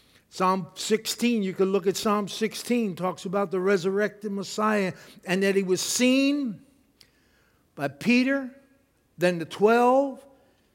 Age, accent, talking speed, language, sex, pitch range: 60-79, American, 130 wpm, English, male, 155-210 Hz